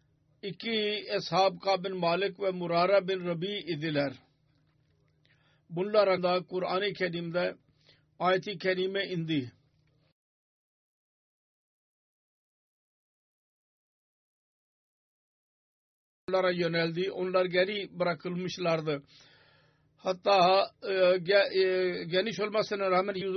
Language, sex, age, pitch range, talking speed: Turkish, male, 50-69, 165-190 Hz, 65 wpm